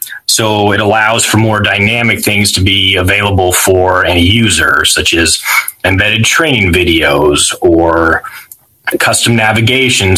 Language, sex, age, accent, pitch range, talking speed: English, male, 30-49, American, 95-115 Hz, 125 wpm